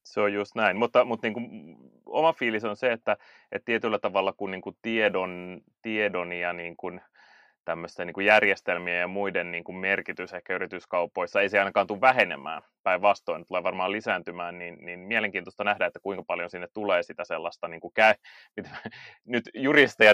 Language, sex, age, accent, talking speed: Finnish, male, 30-49, native, 180 wpm